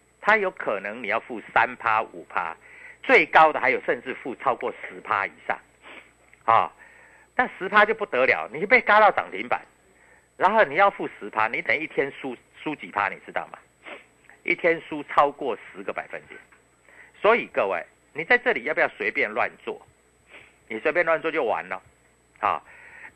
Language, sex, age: Chinese, male, 50-69